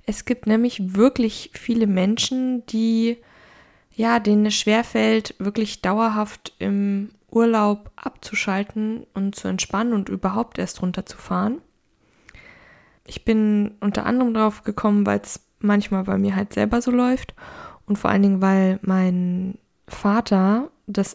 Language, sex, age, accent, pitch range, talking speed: German, female, 20-39, German, 200-230 Hz, 125 wpm